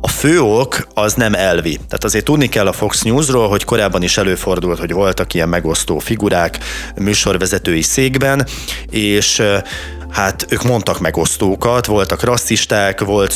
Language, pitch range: Hungarian, 95-115 Hz